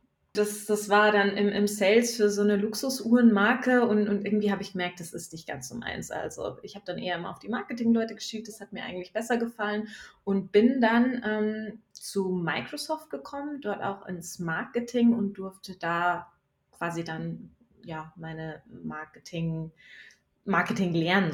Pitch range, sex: 175-215 Hz, female